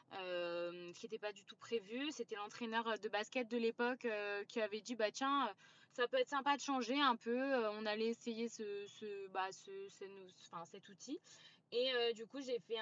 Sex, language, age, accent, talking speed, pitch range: female, French, 20-39, French, 210 wpm, 200-240 Hz